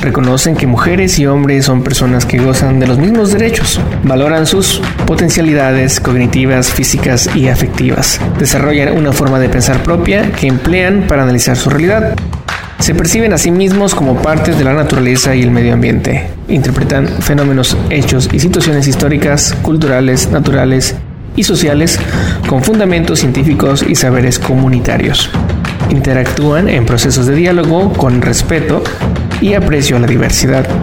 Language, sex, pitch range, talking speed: Spanish, male, 130-165 Hz, 145 wpm